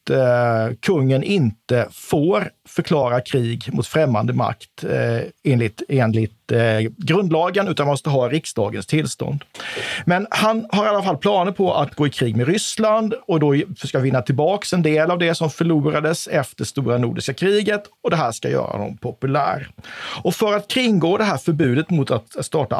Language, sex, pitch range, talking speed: Swedish, male, 125-170 Hz, 165 wpm